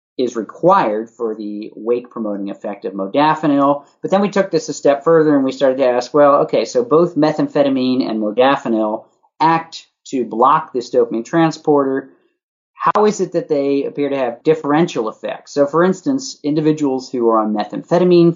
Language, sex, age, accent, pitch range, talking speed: English, male, 40-59, American, 110-150 Hz, 170 wpm